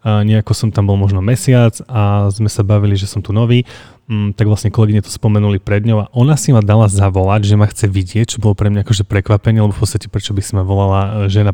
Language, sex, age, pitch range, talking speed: Slovak, male, 30-49, 100-115 Hz, 245 wpm